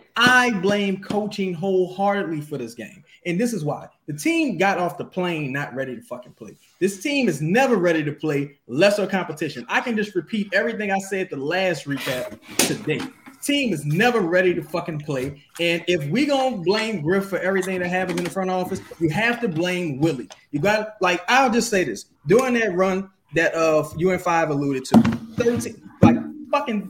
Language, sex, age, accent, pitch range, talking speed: English, male, 20-39, American, 180-265 Hz, 200 wpm